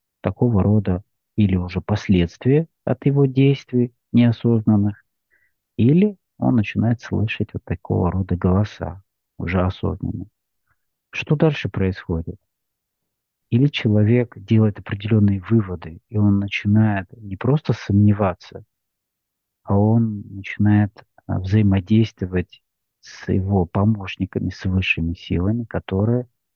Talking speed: 100 wpm